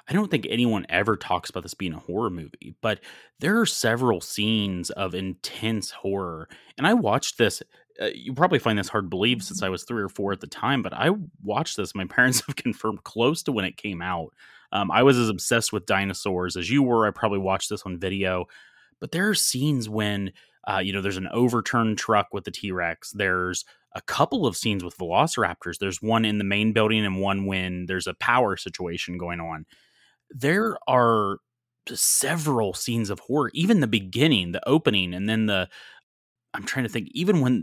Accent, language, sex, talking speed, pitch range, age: American, English, male, 205 wpm, 95-120 Hz, 30-49